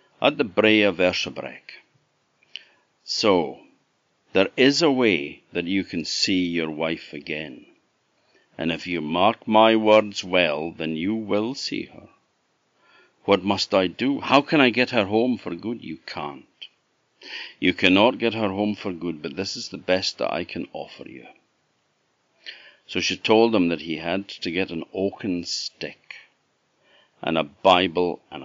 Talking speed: 160 wpm